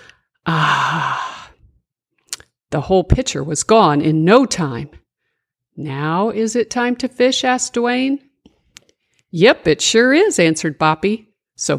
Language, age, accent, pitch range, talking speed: English, 50-69, American, 150-210 Hz, 120 wpm